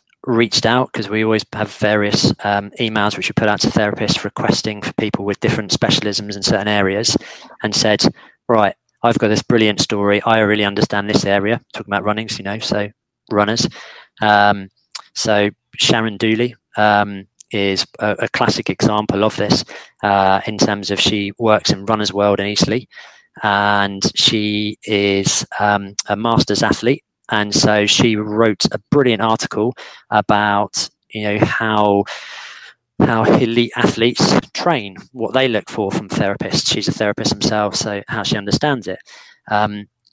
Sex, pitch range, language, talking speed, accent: male, 100-110 Hz, English, 155 wpm, British